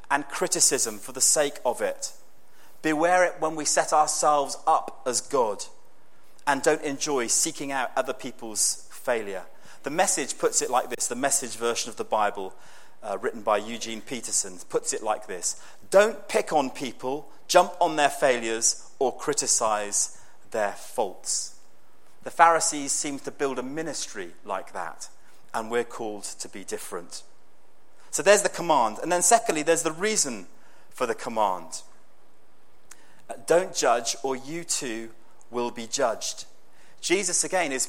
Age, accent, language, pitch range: 30-49, British, English, 120-175 Hz